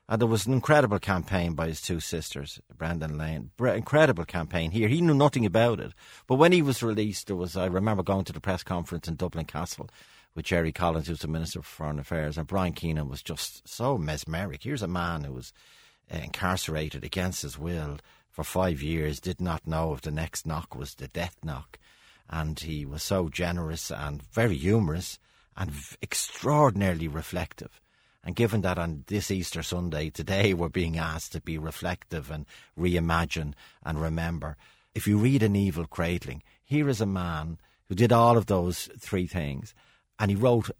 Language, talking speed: English, 185 wpm